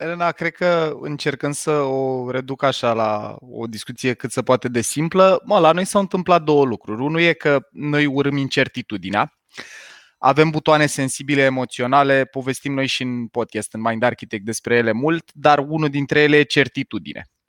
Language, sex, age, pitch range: Romanian, male, 20-39, 125-160 Hz